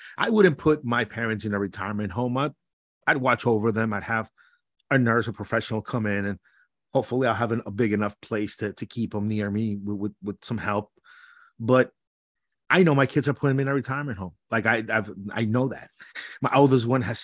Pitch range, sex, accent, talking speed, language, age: 110-140 Hz, male, American, 220 wpm, English, 30-49